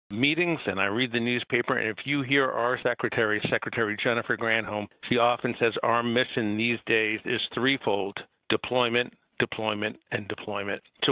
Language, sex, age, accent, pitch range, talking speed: English, male, 60-79, American, 110-125 Hz, 155 wpm